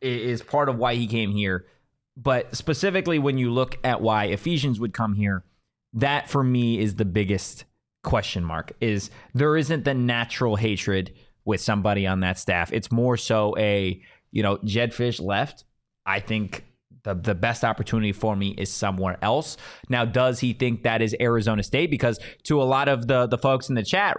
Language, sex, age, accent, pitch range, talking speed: English, male, 20-39, American, 110-145 Hz, 190 wpm